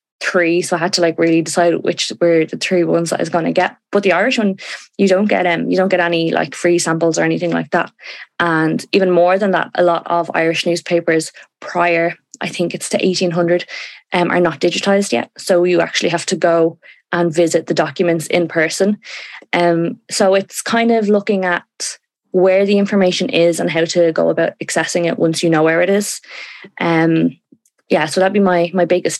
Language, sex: English, female